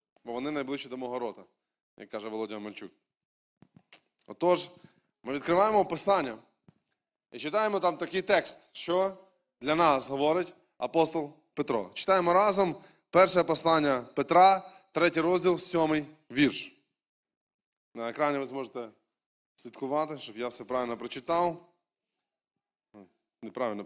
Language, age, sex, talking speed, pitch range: Ukrainian, 20-39, male, 115 wpm, 145-195 Hz